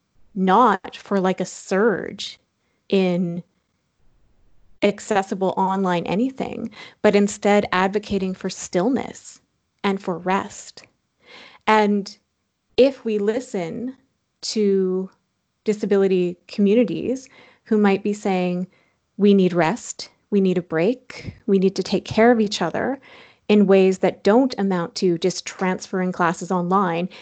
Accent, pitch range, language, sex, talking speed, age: American, 185-215 Hz, English, female, 115 wpm, 30-49